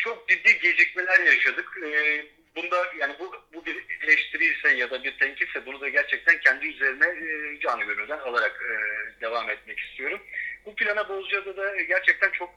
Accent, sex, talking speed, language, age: native, male, 160 wpm, Turkish, 50-69